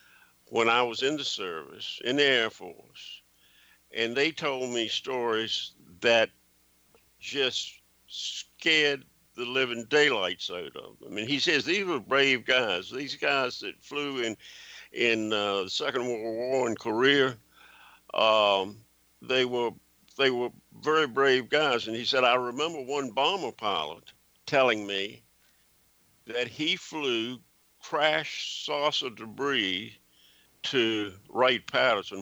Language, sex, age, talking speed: English, male, 60-79, 130 wpm